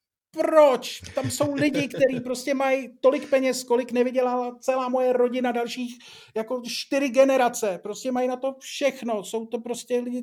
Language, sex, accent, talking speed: Czech, male, native, 160 wpm